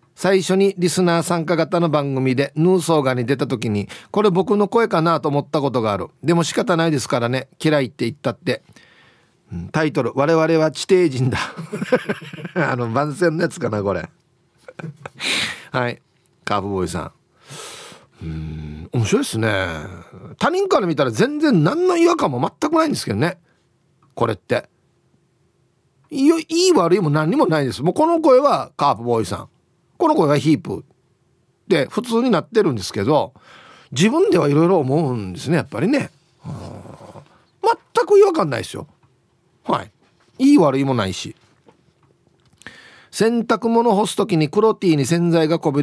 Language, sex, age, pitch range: Japanese, male, 40-59, 125-180 Hz